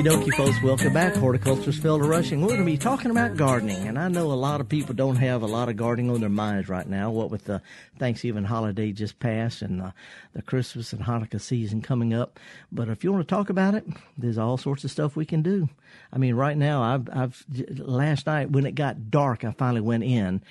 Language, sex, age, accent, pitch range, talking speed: English, male, 50-69, American, 120-150 Hz, 235 wpm